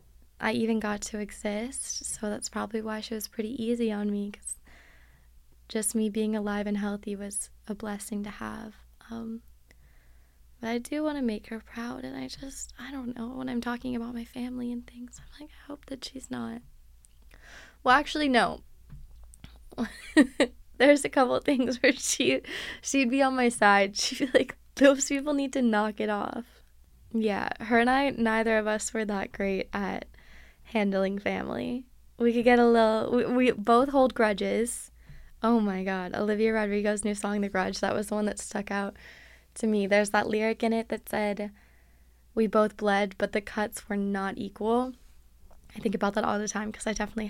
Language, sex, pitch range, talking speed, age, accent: English, female, 205-245 Hz, 190 wpm, 10-29, American